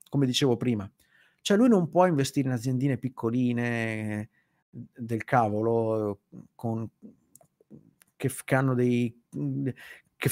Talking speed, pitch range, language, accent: 110 wpm, 115-140 Hz, Italian, native